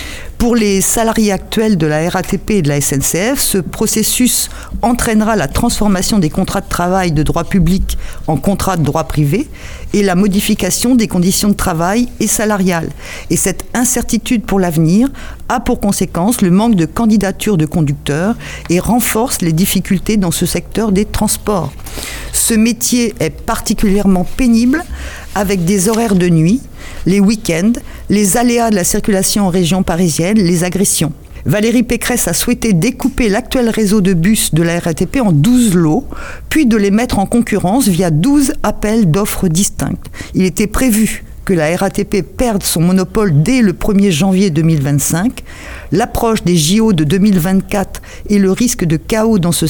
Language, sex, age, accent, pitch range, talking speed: French, female, 50-69, French, 180-225 Hz, 160 wpm